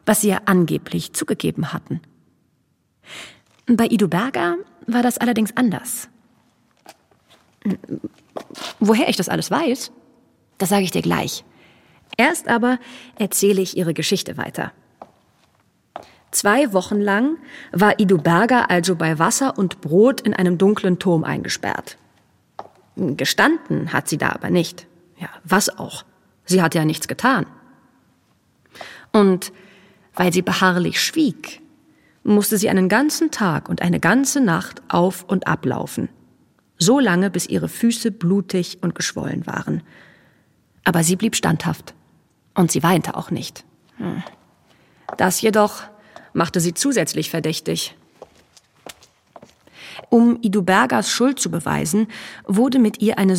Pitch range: 180-235 Hz